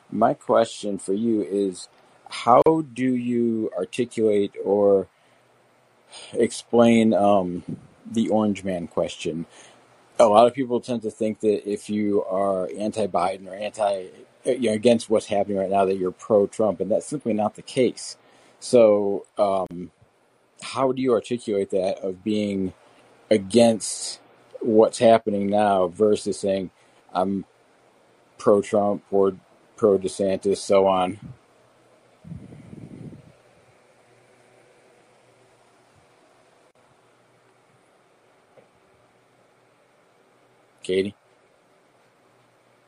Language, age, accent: English, 40-59, American